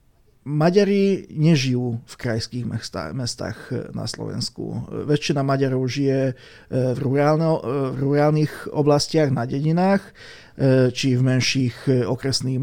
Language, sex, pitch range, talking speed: Slovak, male, 125-140 Hz, 100 wpm